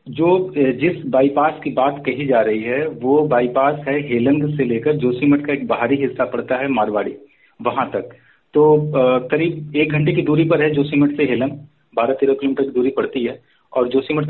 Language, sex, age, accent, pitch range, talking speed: Hindi, male, 40-59, native, 130-155 Hz, 190 wpm